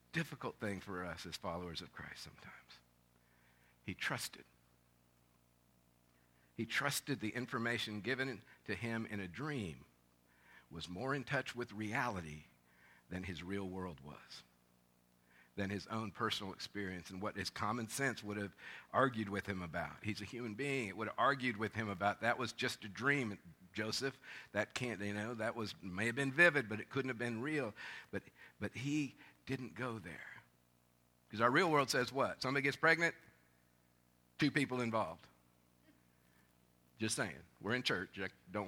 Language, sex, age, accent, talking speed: English, male, 50-69, American, 165 wpm